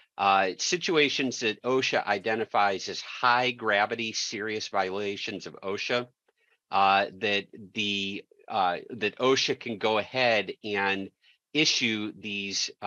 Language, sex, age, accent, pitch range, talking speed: English, male, 50-69, American, 100-125 Hz, 105 wpm